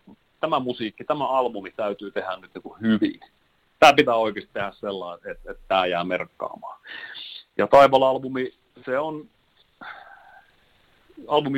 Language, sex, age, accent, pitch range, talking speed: Finnish, male, 30-49, native, 100-130 Hz, 125 wpm